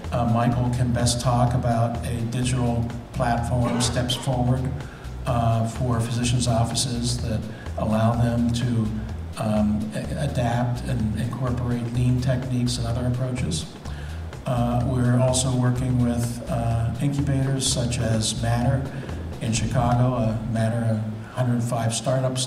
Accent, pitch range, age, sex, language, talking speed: American, 115-125 Hz, 50-69, male, English, 125 wpm